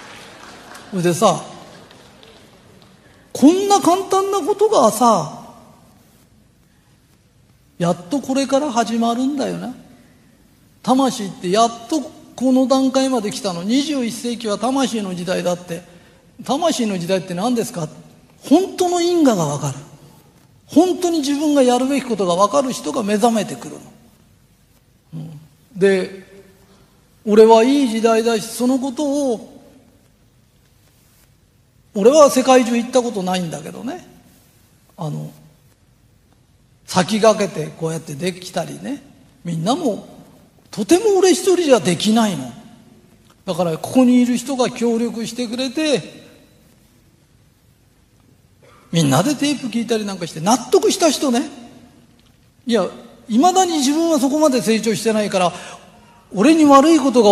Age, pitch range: 40-59, 185-270 Hz